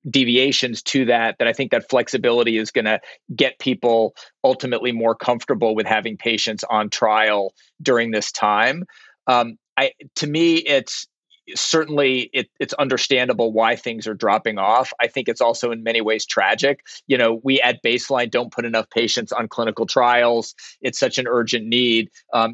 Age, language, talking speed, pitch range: 40-59, English, 170 wpm, 115-135 Hz